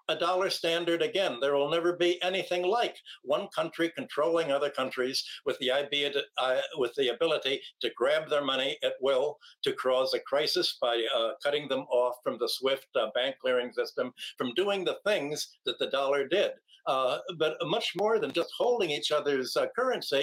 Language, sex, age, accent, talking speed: English, male, 60-79, American, 185 wpm